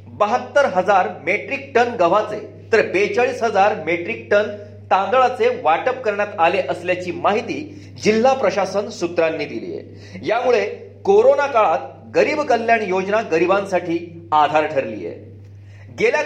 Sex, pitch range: male, 165-240 Hz